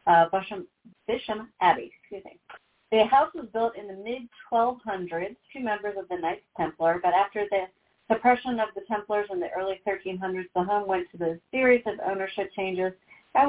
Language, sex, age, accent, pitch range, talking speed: English, female, 40-59, American, 180-245 Hz, 175 wpm